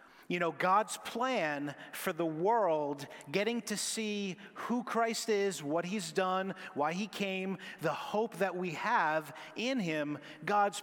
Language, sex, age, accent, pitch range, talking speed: English, male, 30-49, American, 175-210 Hz, 150 wpm